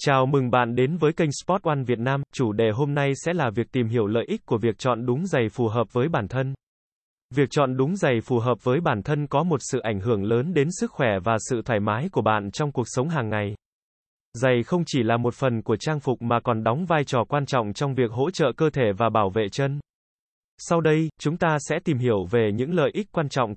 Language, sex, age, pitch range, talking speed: Vietnamese, male, 20-39, 120-155 Hz, 250 wpm